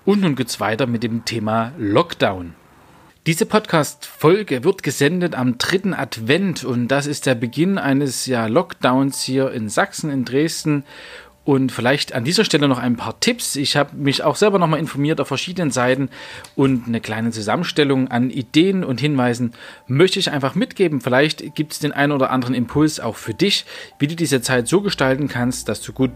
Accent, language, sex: German, German, male